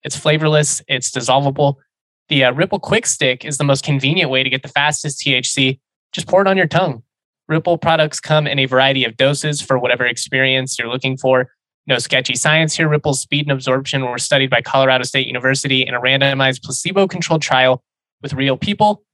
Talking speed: 190 wpm